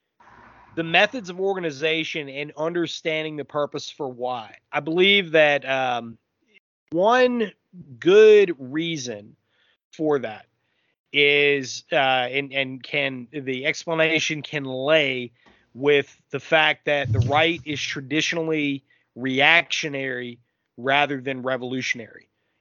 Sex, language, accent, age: male, English, American, 30-49